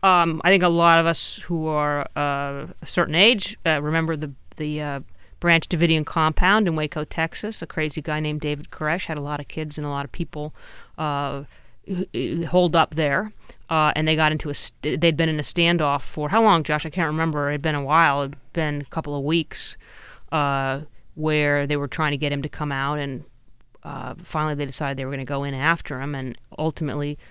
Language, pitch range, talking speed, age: English, 145-160 Hz, 220 wpm, 30-49